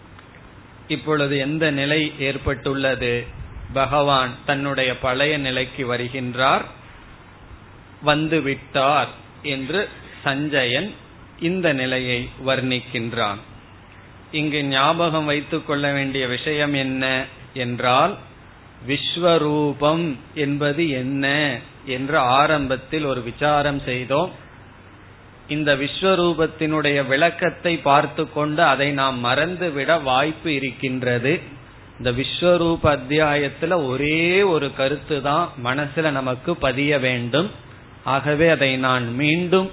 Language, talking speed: Tamil, 85 wpm